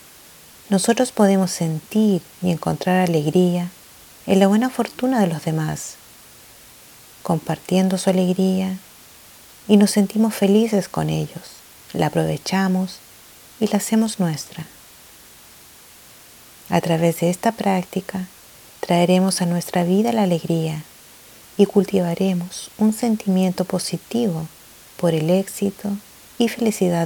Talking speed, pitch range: 110 wpm, 170-200 Hz